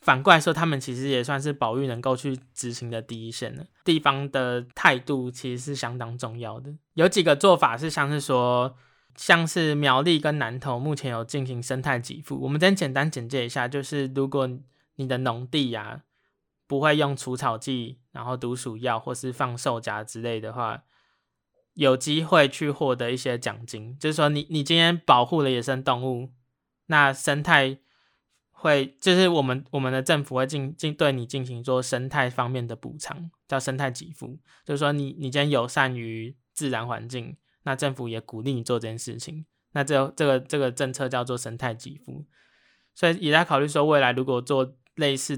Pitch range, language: 125-145 Hz, Chinese